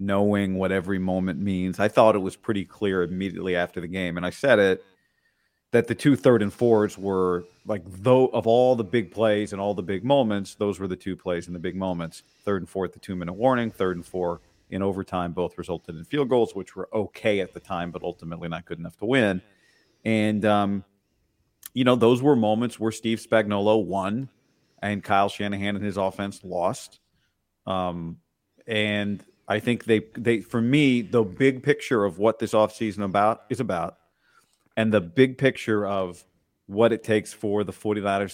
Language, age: English, 40-59